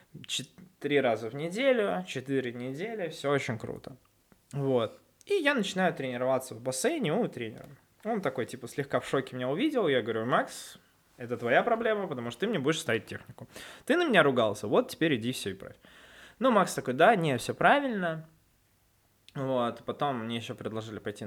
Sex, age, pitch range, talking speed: male, 20-39, 105-140 Hz, 175 wpm